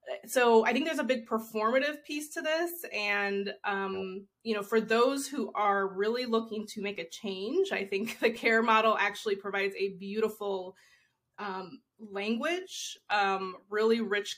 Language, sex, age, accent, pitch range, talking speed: English, female, 20-39, American, 200-240 Hz, 160 wpm